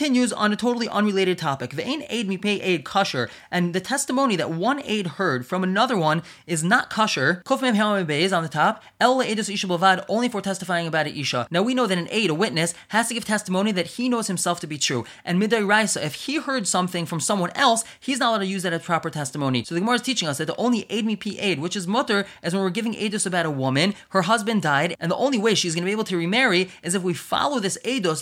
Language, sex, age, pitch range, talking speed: English, male, 20-39, 165-220 Hz, 260 wpm